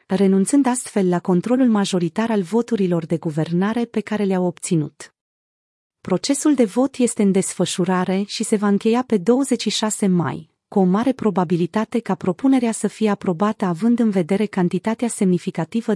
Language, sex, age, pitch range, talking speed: Romanian, female, 30-49, 180-225 Hz, 150 wpm